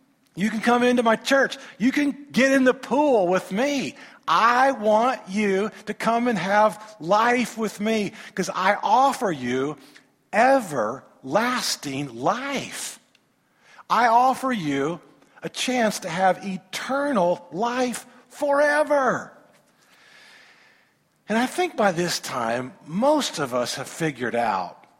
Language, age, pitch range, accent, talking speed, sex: English, 50-69, 190-255 Hz, American, 125 wpm, male